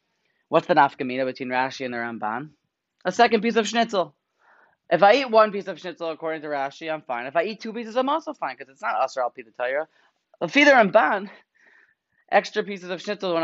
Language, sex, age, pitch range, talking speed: English, male, 20-39, 145-185 Hz, 220 wpm